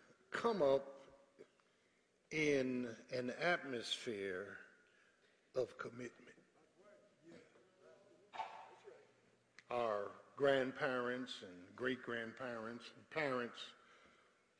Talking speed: 55 wpm